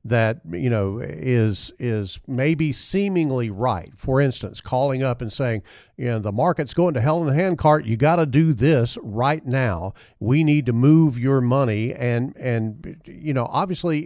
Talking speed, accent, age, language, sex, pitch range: 185 wpm, American, 50-69, English, male, 115-150 Hz